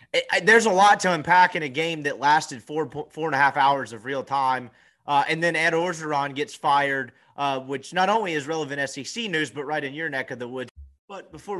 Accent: American